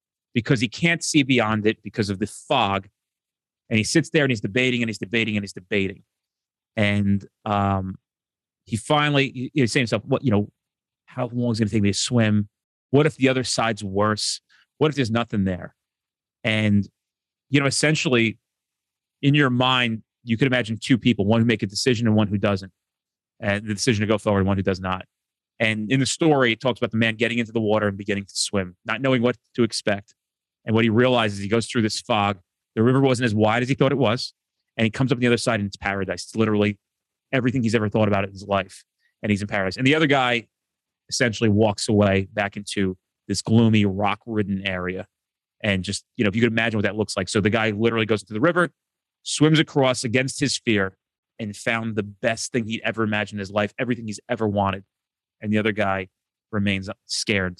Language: English